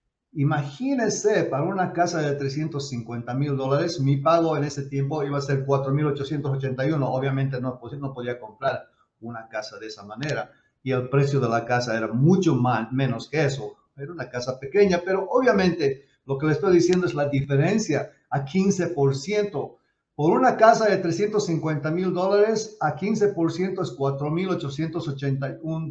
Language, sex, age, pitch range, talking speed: English, male, 50-69, 135-175 Hz, 150 wpm